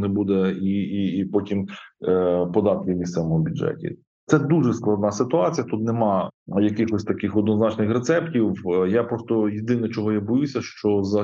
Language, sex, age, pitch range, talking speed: Ukrainian, male, 20-39, 100-115 Hz, 150 wpm